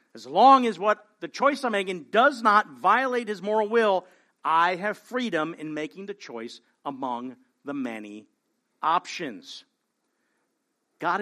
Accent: American